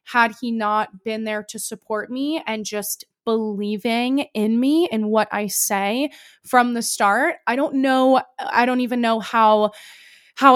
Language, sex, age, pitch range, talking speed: English, female, 20-39, 210-245 Hz, 175 wpm